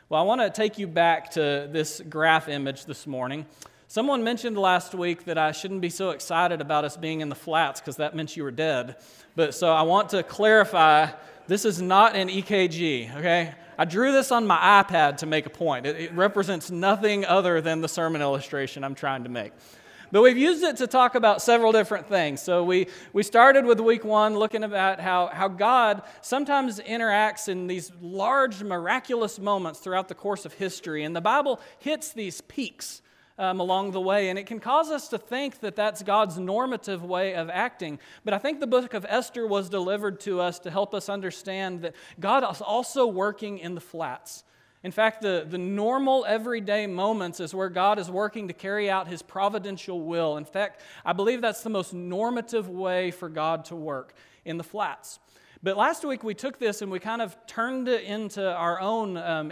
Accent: American